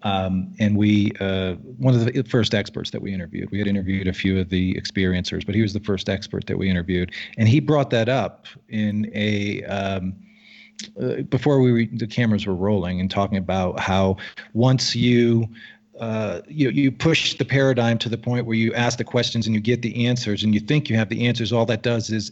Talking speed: 220 wpm